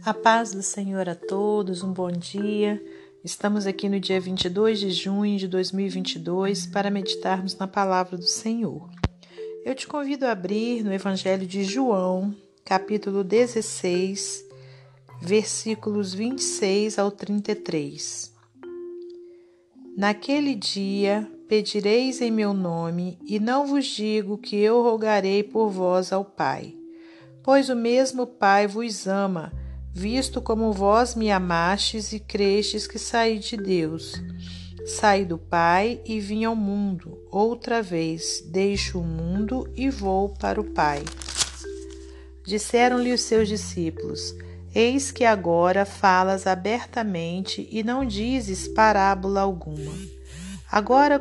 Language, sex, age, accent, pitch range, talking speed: Portuguese, female, 50-69, Brazilian, 180-225 Hz, 125 wpm